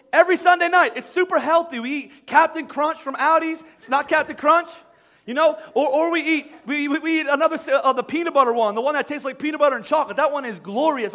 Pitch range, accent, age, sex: 245-305 Hz, American, 30-49, male